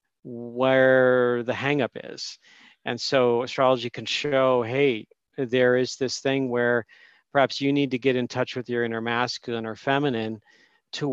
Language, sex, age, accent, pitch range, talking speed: English, male, 40-59, American, 120-140 Hz, 155 wpm